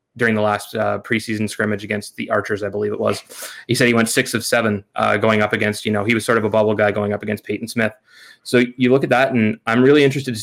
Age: 20-39